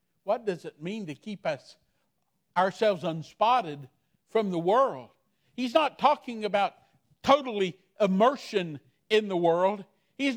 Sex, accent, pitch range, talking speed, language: male, American, 150-240 Hz, 125 wpm, English